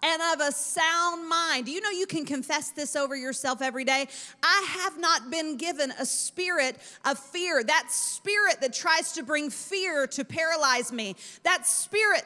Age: 40-59